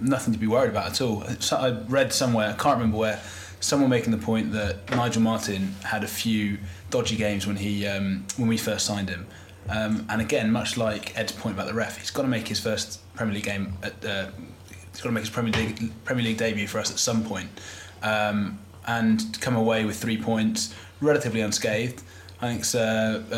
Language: English